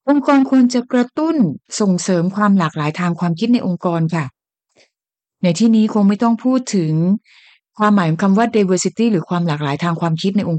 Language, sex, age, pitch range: Thai, female, 30-49, 180-255 Hz